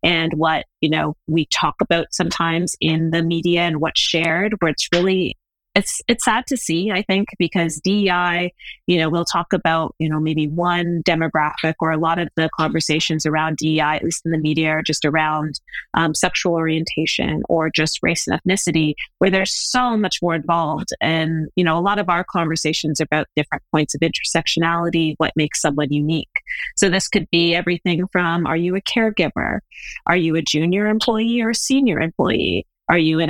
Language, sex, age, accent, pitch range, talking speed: English, female, 30-49, American, 160-195 Hz, 190 wpm